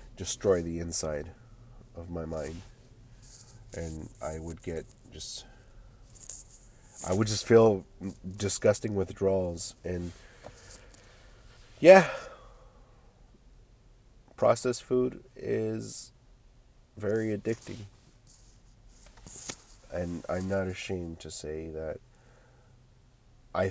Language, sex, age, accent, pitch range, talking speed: English, male, 30-49, American, 85-115 Hz, 80 wpm